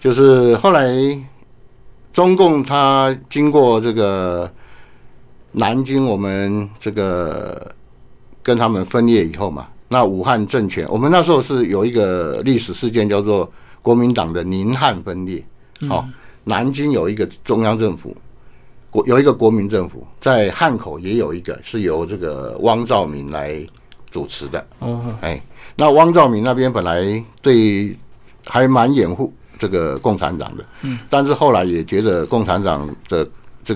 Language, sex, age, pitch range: Chinese, male, 60-79, 105-130 Hz